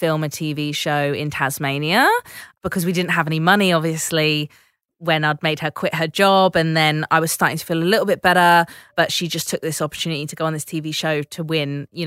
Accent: British